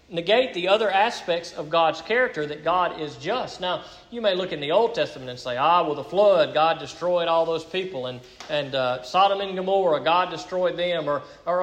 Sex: male